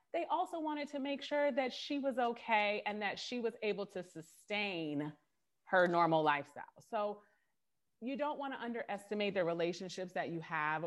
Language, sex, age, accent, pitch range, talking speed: English, female, 30-49, American, 180-260 Hz, 170 wpm